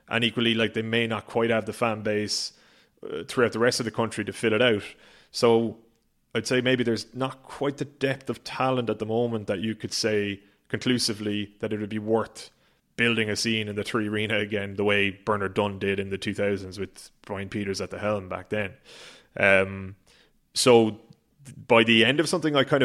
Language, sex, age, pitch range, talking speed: English, male, 20-39, 105-115 Hz, 210 wpm